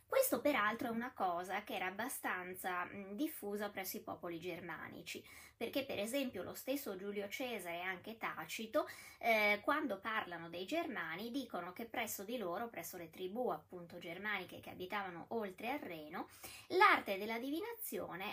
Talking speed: 150 wpm